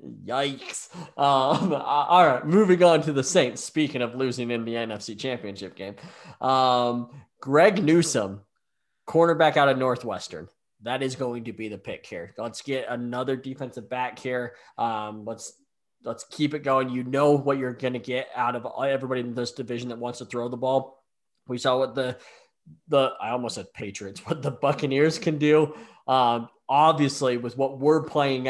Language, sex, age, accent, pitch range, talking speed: English, male, 20-39, American, 120-145 Hz, 175 wpm